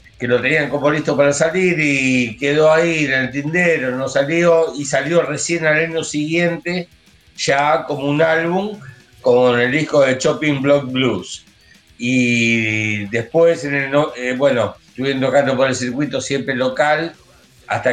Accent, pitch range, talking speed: Argentinian, 130-165 Hz, 155 wpm